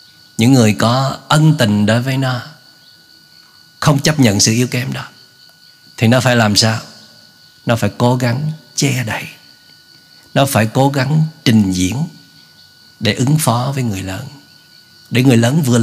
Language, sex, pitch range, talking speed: Vietnamese, male, 115-155 Hz, 160 wpm